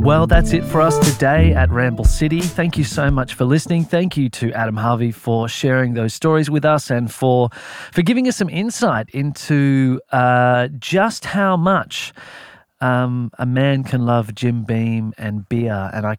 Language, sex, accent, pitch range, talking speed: English, male, Australian, 115-150 Hz, 180 wpm